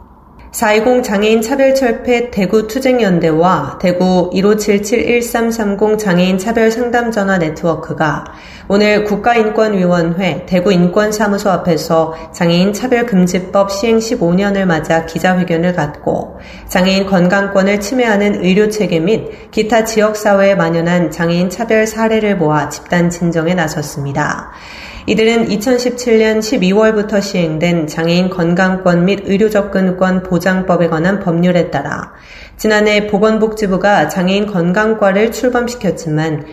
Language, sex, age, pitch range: Korean, female, 30-49, 170-215 Hz